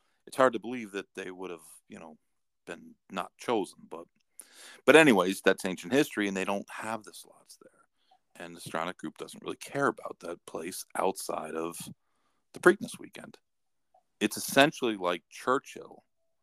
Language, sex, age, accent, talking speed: English, male, 40-59, American, 165 wpm